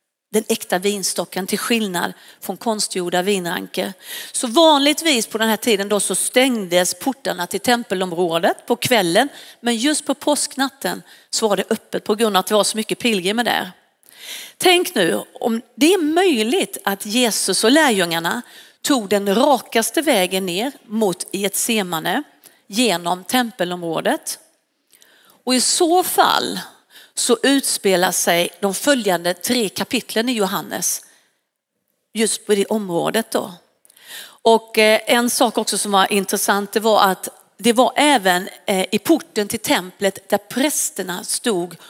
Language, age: Swedish, 40-59